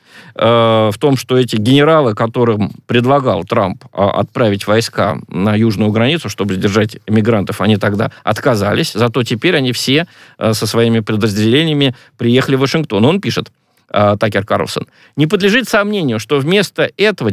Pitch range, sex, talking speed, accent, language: 115-150 Hz, male, 135 wpm, native, Russian